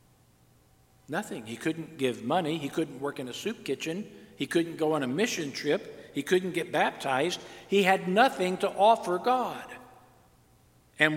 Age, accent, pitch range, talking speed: 50-69, American, 140-180 Hz, 160 wpm